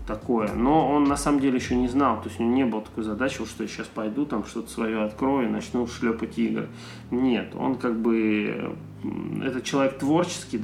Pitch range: 110-125 Hz